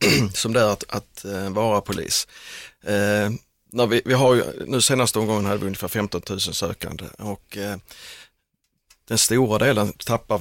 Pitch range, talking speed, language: 90-110 Hz, 160 wpm, Swedish